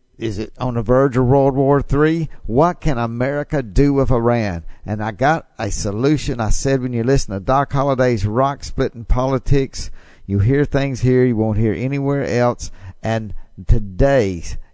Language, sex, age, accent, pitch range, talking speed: English, male, 50-69, American, 105-135 Hz, 170 wpm